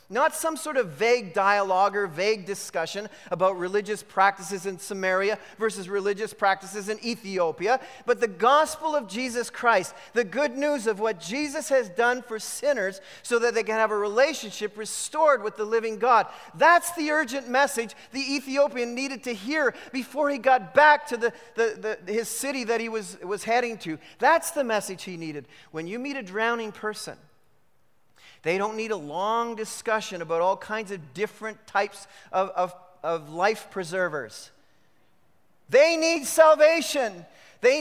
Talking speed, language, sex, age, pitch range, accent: 160 wpm, English, male, 40-59, 175-245 Hz, American